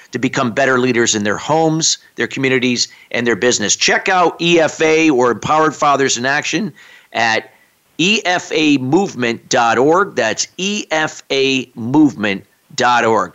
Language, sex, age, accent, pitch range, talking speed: English, male, 50-69, American, 135-170 Hz, 110 wpm